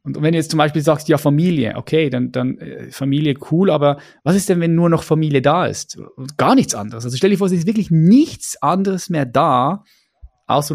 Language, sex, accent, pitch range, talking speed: German, male, German, 130-165 Hz, 225 wpm